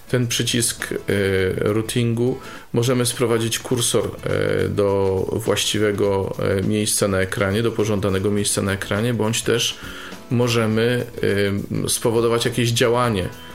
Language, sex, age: Polish, male, 40-59